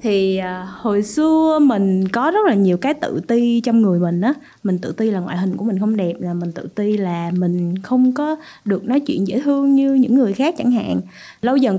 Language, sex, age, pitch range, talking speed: Vietnamese, female, 20-39, 180-250 Hz, 240 wpm